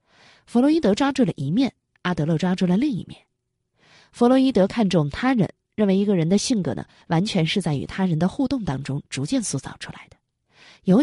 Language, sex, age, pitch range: Chinese, female, 20-39, 160-245 Hz